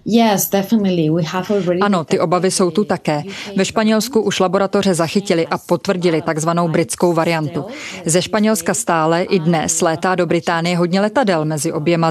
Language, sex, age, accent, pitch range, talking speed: Czech, female, 20-39, native, 170-195 Hz, 140 wpm